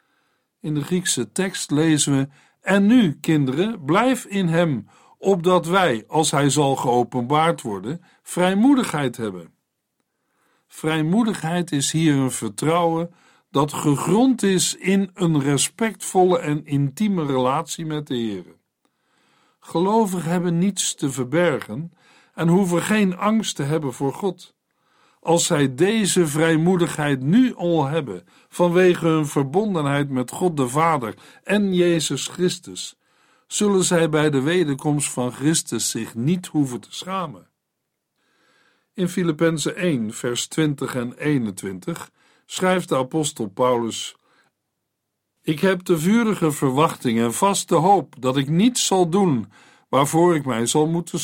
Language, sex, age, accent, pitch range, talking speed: Dutch, male, 60-79, Dutch, 140-185 Hz, 130 wpm